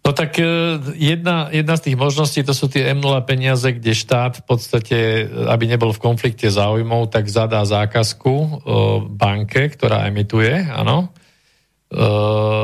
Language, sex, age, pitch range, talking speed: Slovak, male, 40-59, 105-125 Hz, 140 wpm